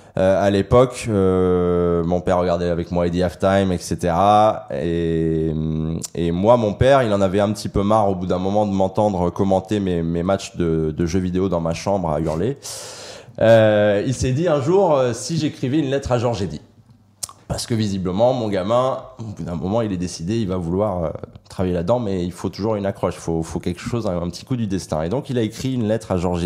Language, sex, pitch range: French, male, 85-110 Hz